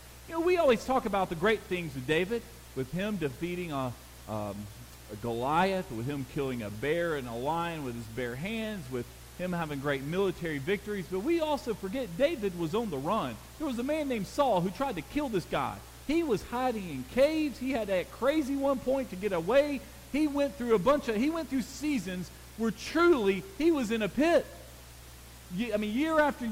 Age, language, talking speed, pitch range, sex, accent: 40-59, English, 210 wpm, 175-275 Hz, male, American